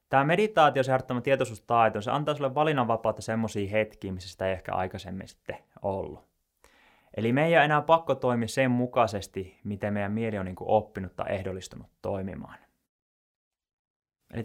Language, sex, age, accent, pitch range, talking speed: Finnish, male, 20-39, native, 100-125 Hz, 140 wpm